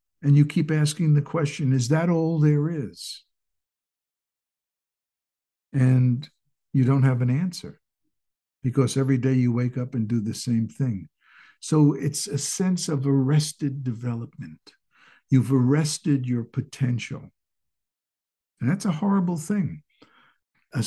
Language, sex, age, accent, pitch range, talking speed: English, male, 60-79, American, 115-145 Hz, 130 wpm